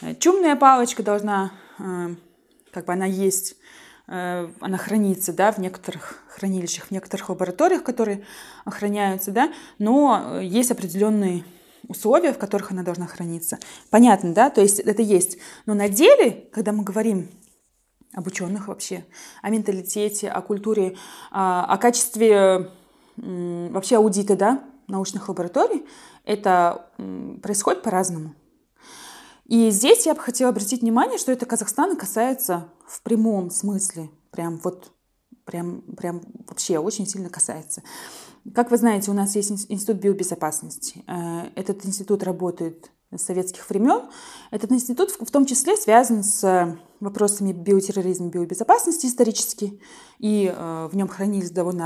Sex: female